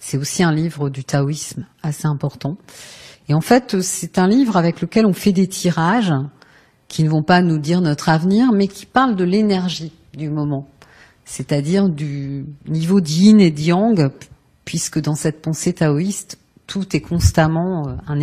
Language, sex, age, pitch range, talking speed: French, female, 40-59, 140-175 Hz, 165 wpm